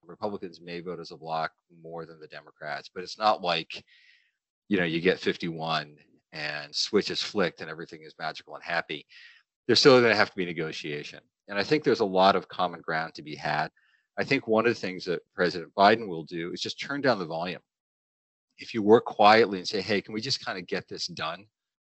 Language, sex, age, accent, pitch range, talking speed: English, male, 40-59, American, 80-100 Hz, 225 wpm